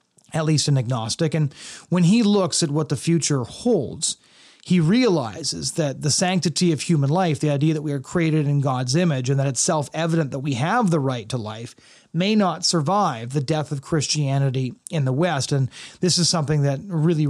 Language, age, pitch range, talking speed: English, 30-49, 145-185 Hz, 200 wpm